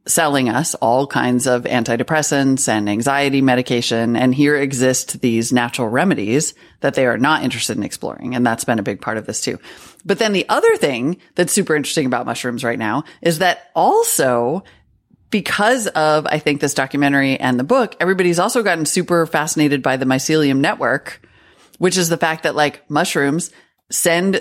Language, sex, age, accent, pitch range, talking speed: English, female, 30-49, American, 135-190 Hz, 175 wpm